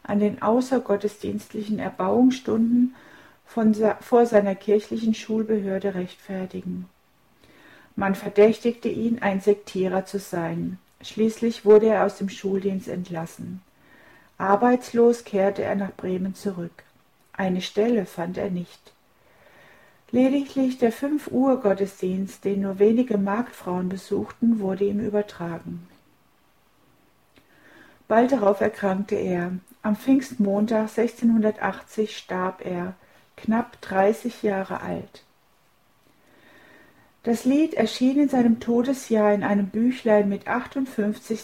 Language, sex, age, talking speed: German, female, 60-79, 105 wpm